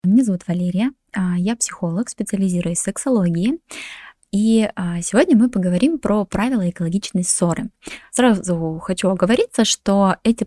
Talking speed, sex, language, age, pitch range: 120 wpm, female, Russian, 20-39, 180-235 Hz